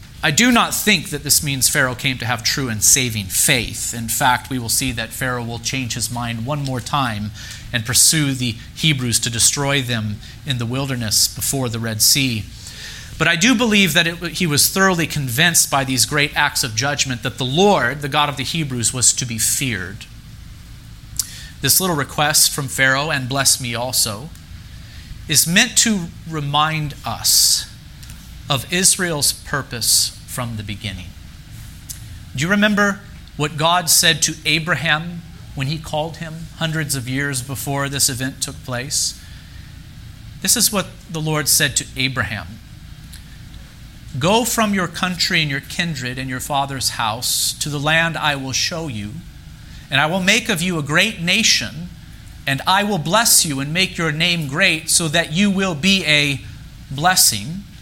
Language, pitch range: English, 120-165 Hz